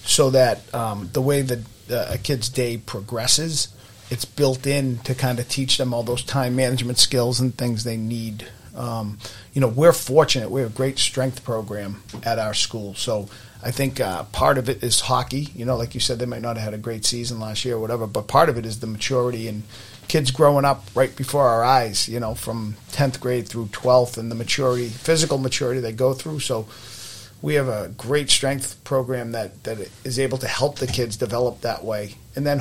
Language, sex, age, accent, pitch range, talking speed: English, male, 40-59, American, 115-130 Hz, 215 wpm